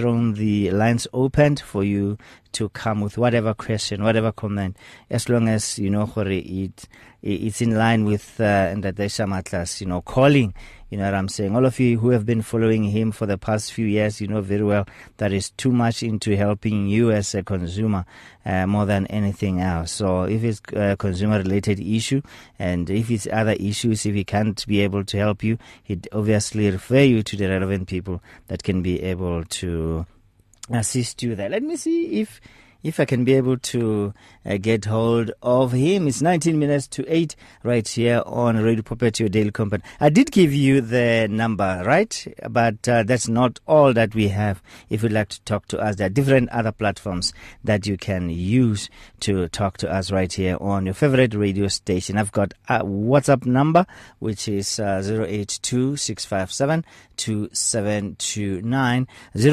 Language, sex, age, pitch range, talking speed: English, male, 30-49, 100-120 Hz, 180 wpm